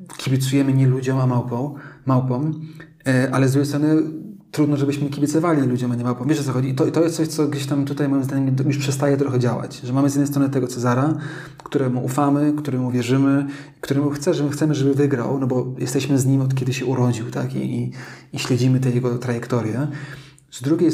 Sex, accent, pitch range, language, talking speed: male, native, 125-140 Hz, Polish, 205 wpm